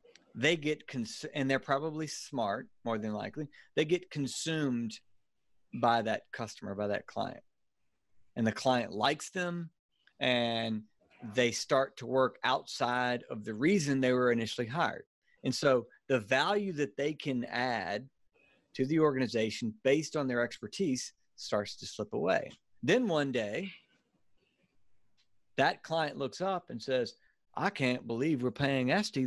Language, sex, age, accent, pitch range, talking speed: English, male, 40-59, American, 120-175 Hz, 145 wpm